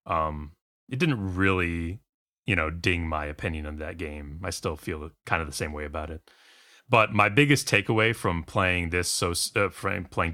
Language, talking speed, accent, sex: English, 190 wpm, American, male